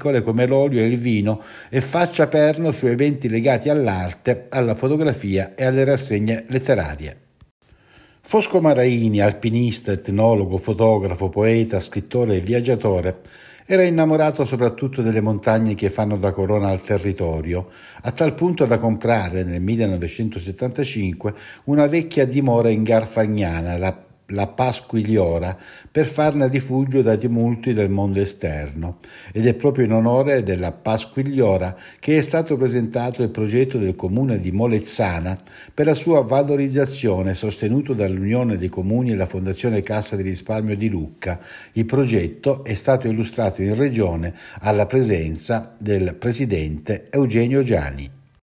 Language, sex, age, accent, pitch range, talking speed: Italian, male, 60-79, native, 100-130 Hz, 130 wpm